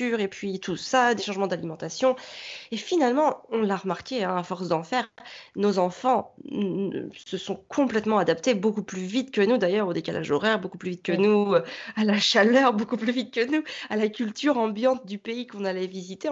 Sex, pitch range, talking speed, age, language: female, 195-255 Hz, 200 wpm, 30-49, French